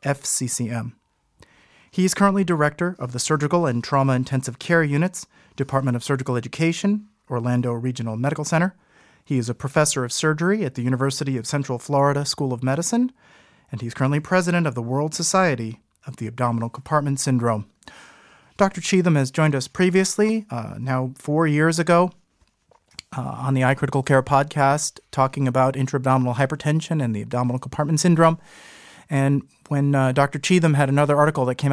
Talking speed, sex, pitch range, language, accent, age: 165 wpm, male, 125-155 Hz, English, American, 40-59